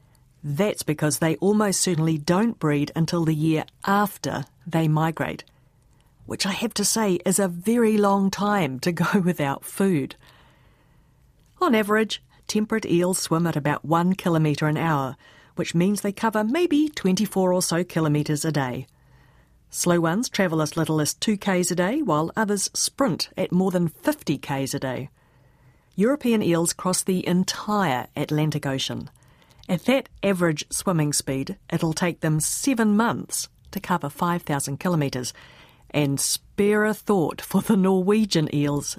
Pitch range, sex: 150-205 Hz, female